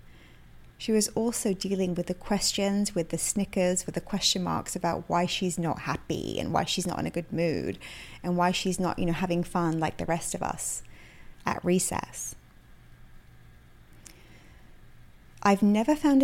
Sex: female